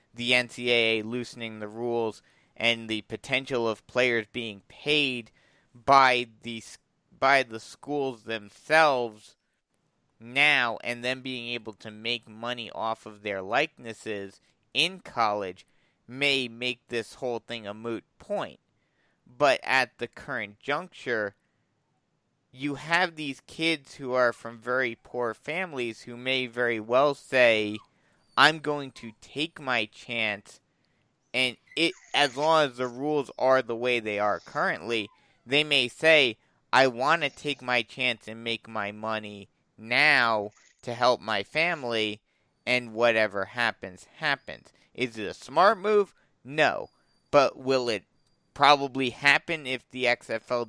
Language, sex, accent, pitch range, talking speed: English, male, American, 115-140 Hz, 135 wpm